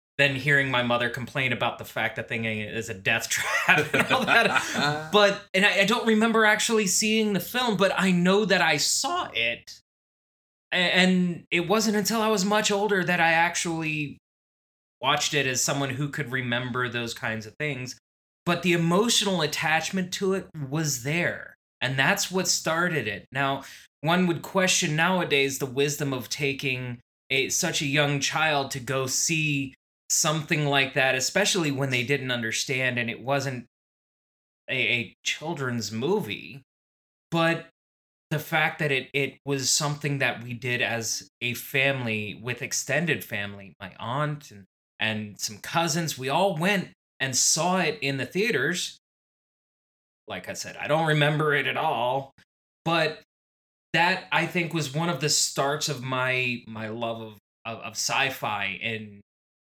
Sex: male